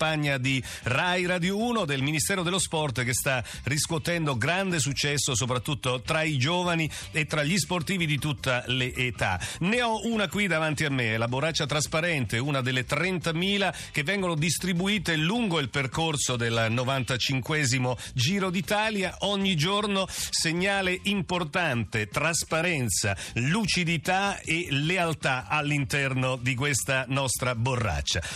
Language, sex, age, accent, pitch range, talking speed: Italian, male, 50-69, native, 130-170 Hz, 130 wpm